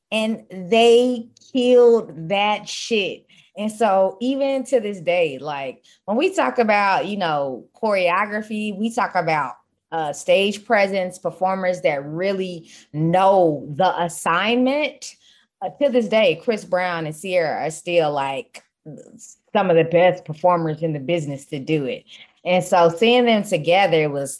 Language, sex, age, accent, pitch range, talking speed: English, female, 20-39, American, 165-220 Hz, 145 wpm